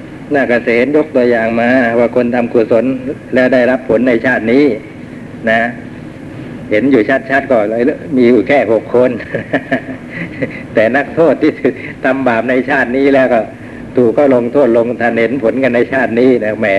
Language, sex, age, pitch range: Thai, male, 60-79, 115-135 Hz